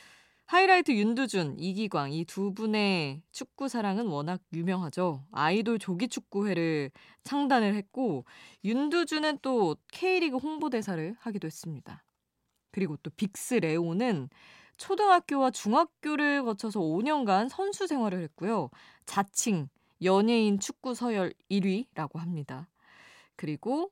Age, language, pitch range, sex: 20-39, Korean, 165-245 Hz, female